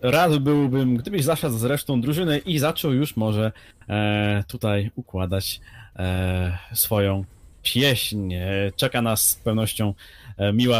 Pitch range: 95-130 Hz